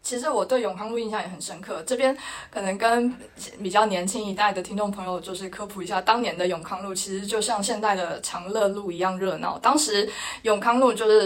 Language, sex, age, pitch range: Chinese, female, 20-39, 185-235 Hz